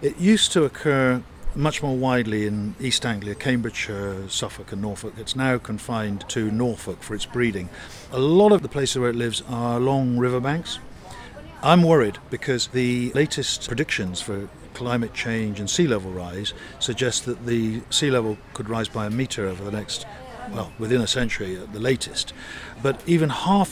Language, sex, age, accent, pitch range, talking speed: English, male, 50-69, British, 105-130 Hz, 175 wpm